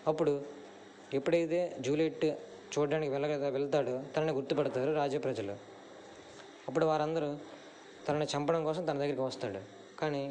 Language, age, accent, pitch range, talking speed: Telugu, 20-39, native, 135-155 Hz, 105 wpm